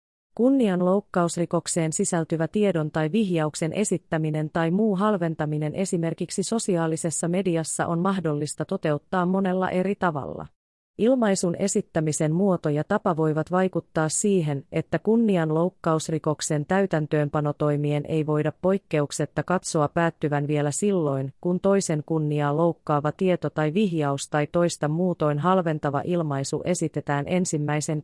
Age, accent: 30-49, native